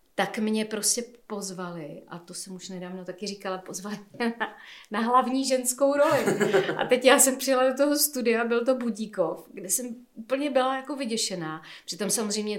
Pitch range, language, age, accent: 185-250 Hz, Czech, 40-59, native